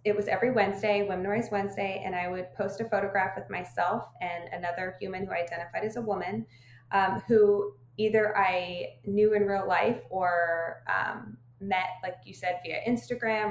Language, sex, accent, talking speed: English, female, American, 180 wpm